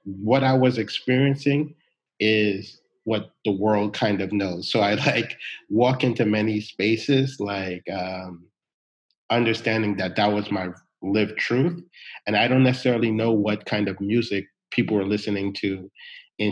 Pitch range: 100-115 Hz